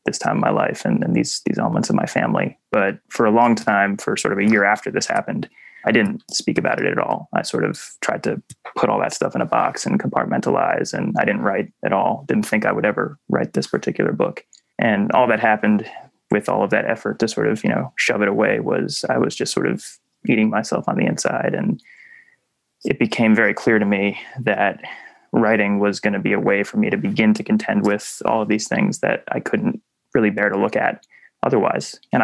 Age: 20-39